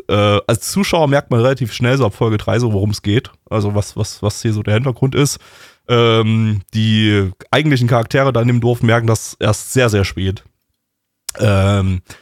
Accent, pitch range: German, 105-125 Hz